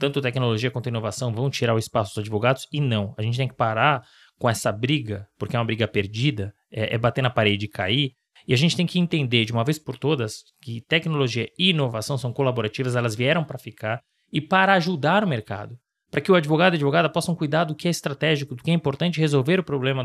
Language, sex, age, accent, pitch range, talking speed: Portuguese, male, 20-39, Brazilian, 115-155 Hz, 230 wpm